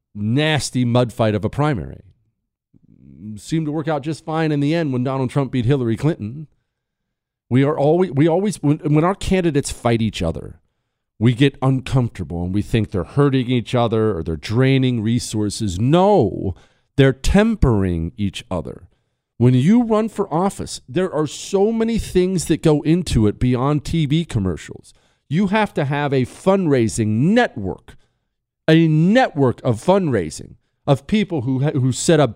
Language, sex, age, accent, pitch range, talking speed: English, male, 40-59, American, 115-180 Hz, 160 wpm